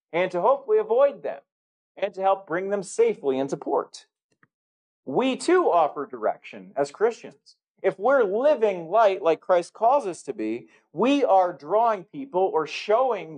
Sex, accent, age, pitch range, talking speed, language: male, American, 40-59, 165-230 Hz, 155 wpm, English